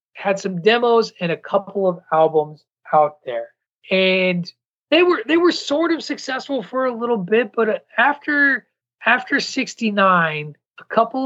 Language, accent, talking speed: English, American, 150 wpm